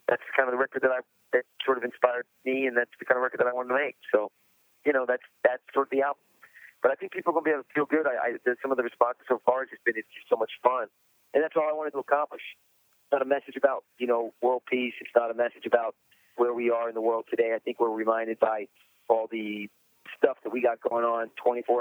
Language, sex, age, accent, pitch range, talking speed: English, male, 30-49, American, 115-140 Hz, 280 wpm